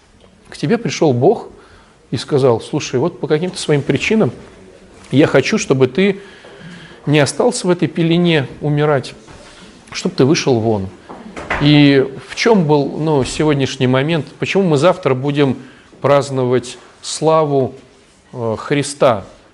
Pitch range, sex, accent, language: 130-170 Hz, male, native, Russian